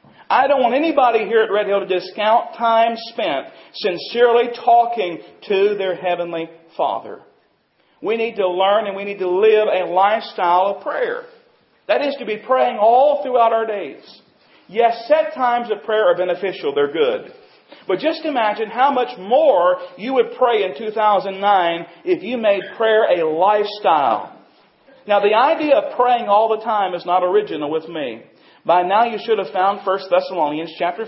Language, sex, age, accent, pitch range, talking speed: English, male, 40-59, American, 190-275 Hz, 170 wpm